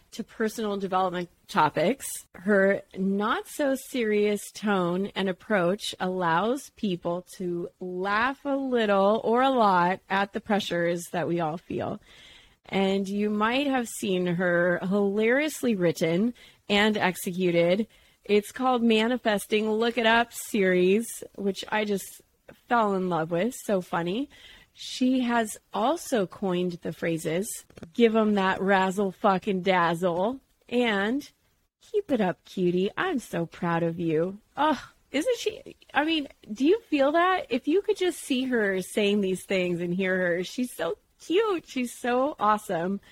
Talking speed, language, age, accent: 140 wpm, English, 30-49, American